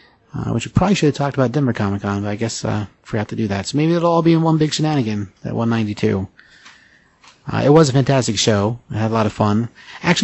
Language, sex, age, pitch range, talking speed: English, male, 30-49, 110-130 Hz, 250 wpm